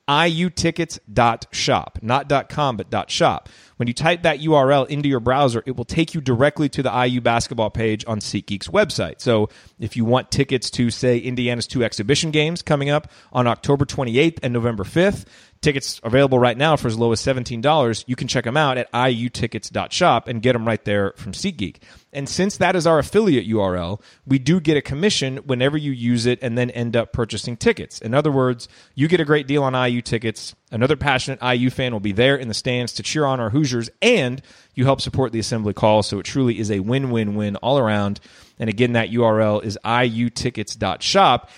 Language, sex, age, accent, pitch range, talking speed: English, male, 30-49, American, 110-140 Hz, 200 wpm